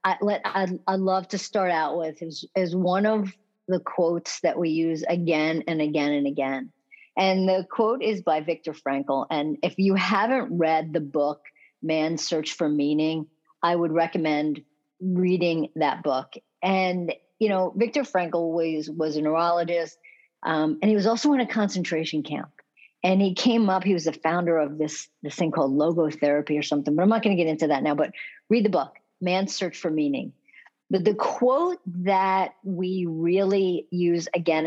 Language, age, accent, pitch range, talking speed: English, 50-69, American, 160-195 Hz, 180 wpm